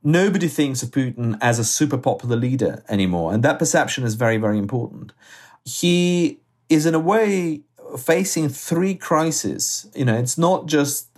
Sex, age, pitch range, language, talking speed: male, 40-59, 115-155 Hz, English, 160 wpm